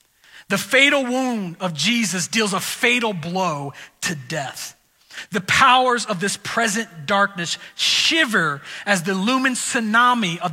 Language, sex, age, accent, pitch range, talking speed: English, male, 40-59, American, 155-200 Hz, 130 wpm